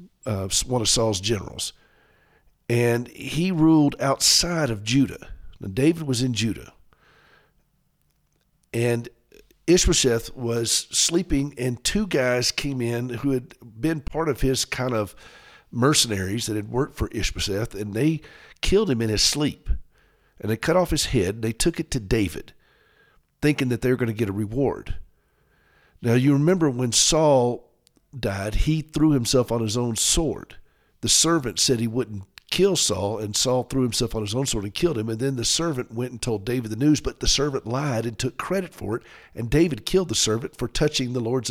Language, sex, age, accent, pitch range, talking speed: English, male, 50-69, American, 115-150 Hz, 180 wpm